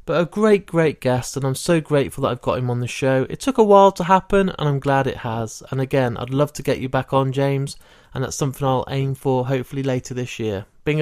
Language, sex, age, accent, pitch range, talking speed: English, male, 20-39, British, 125-155 Hz, 260 wpm